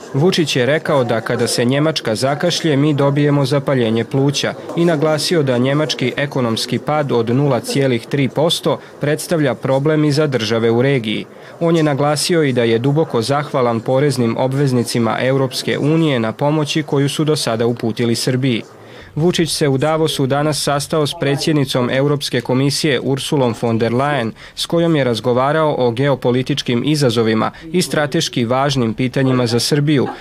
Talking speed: 145 wpm